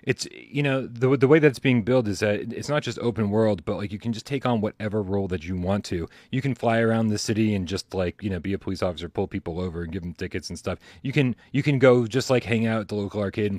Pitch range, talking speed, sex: 100-140 Hz, 295 wpm, male